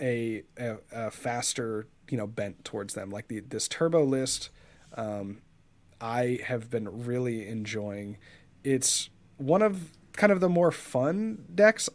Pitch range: 120-155 Hz